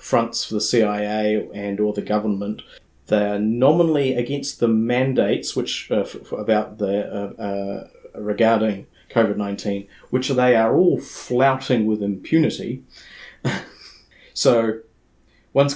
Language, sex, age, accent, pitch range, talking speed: English, male, 30-49, Australian, 105-125 Hz, 120 wpm